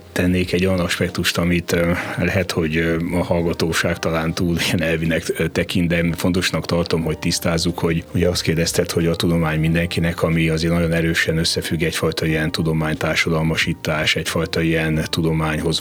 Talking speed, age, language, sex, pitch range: 145 wpm, 30-49, Hungarian, male, 80-90 Hz